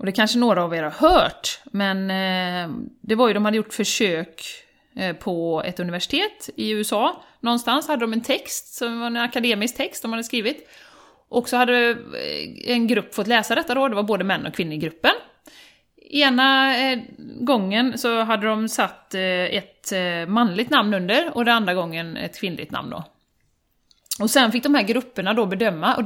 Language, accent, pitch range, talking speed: Swedish, native, 195-255 Hz, 180 wpm